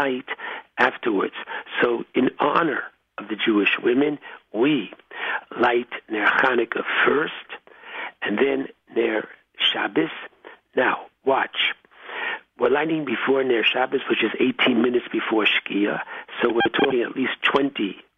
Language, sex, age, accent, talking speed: English, male, 60-79, American, 120 wpm